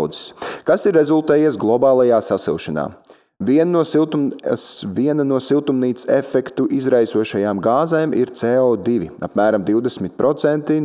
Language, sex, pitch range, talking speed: English, male, 110-155 Hz, 100 wpm